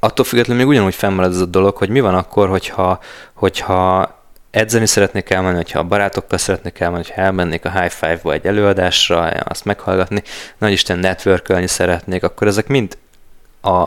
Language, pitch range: Hungarian, 90-100 Hz